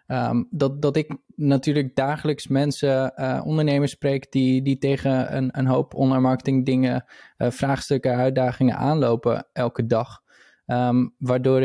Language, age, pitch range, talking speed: Dutch, 20-39, 125-145 Hz, 140 wpm